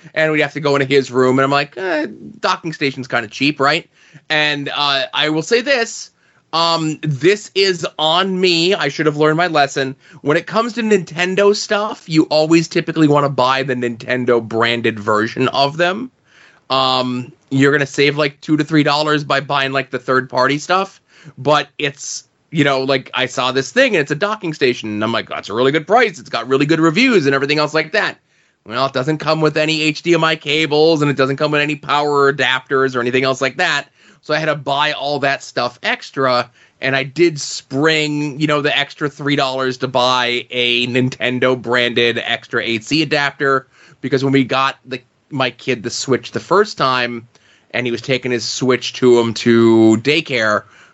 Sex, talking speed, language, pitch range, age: male, 200 wpm, English, 125-155 Hz, 20-39